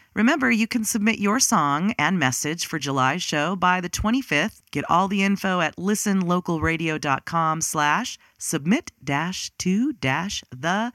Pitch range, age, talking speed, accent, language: 145-205 Hz, 40-59, 140 wpm, American, English